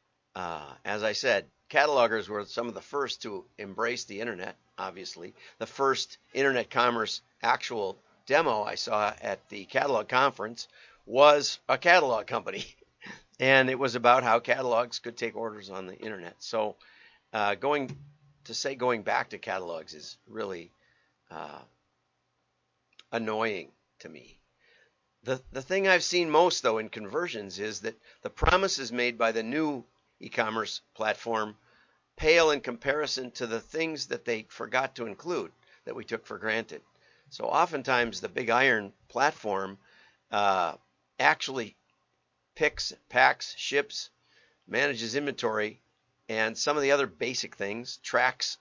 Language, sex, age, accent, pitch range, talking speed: English, male, 50-69, American, 110-140 Hz, 140 wpm